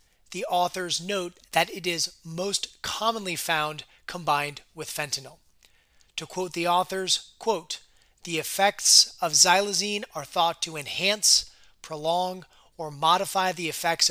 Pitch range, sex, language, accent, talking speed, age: 155-190 Hz, male, English, American, 130 wpm, 30-49